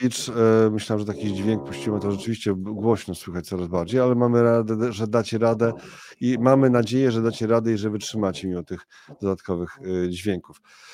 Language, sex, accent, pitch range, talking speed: Polish, male, native, 110-130 Hz, 165 wpm